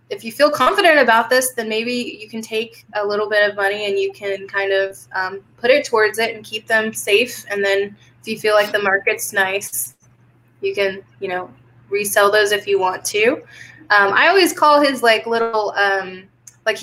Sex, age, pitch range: female, 20-39, 185-230 Hz